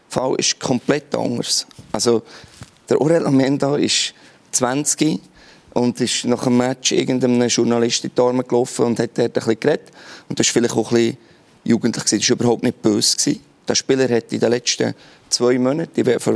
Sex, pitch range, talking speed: male, 115-135 Hz, 160 wpm